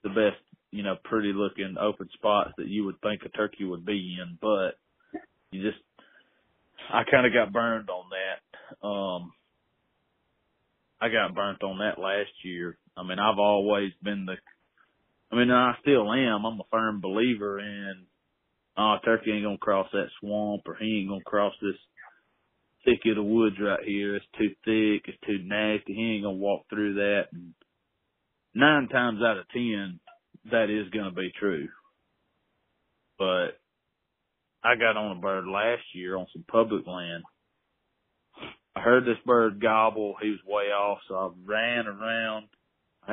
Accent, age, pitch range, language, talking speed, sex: American, 30-49, 100-110 Hz, English, 170 wpm, male